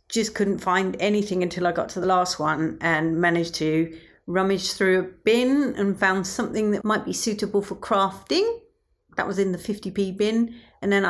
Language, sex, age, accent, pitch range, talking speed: English, female, 40-59, British, 170-215 Hz, 190 wpm